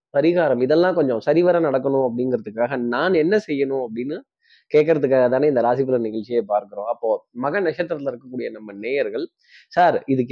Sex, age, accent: male, 20-39, native